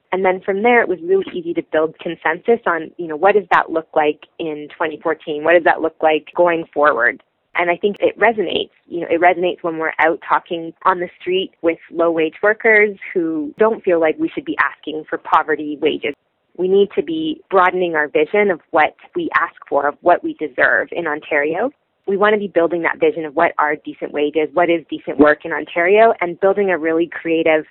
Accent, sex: American, female